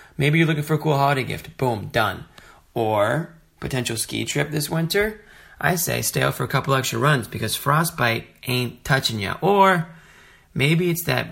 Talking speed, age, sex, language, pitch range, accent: 180 wpm, 30-49, male, English, 110-145 Hz, American